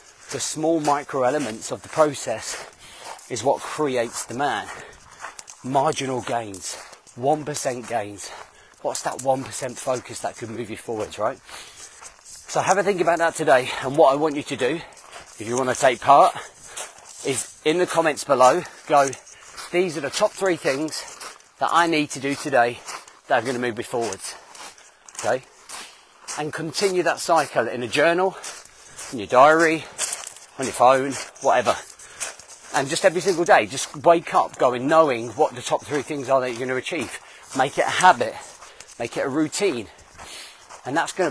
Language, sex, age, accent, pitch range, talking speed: English, male, 30-49, British, 130-160 Hz, 165 wpm